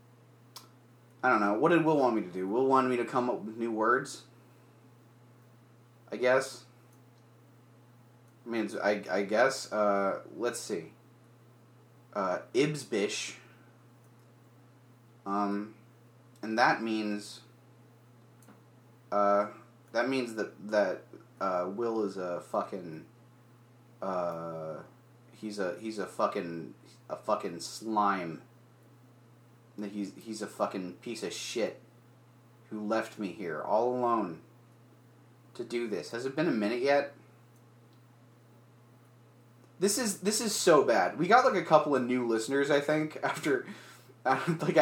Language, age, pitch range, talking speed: English, 30-49, 115-125 Hz, 125 wpm